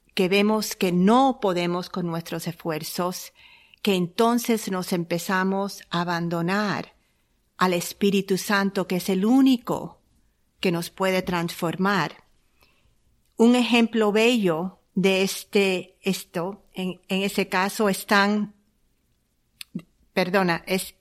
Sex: female